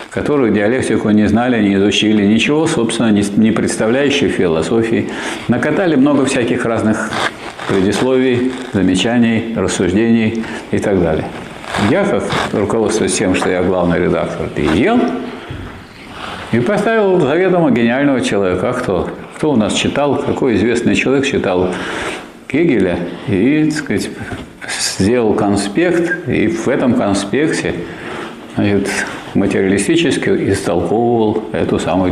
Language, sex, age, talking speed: Russian, male, 50-69, 110 wpm